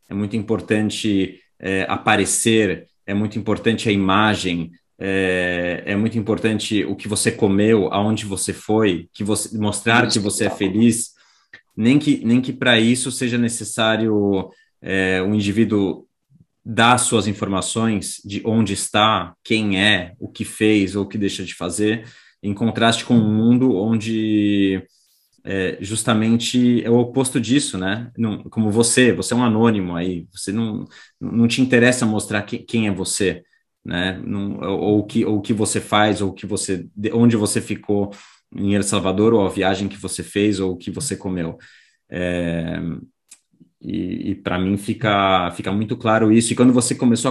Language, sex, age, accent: Portuguese, male, 20-39, Brazilian